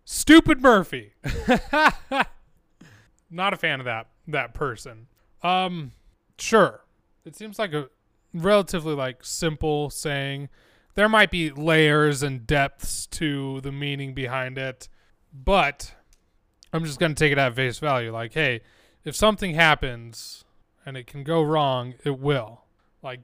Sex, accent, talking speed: male, American, 135 wpm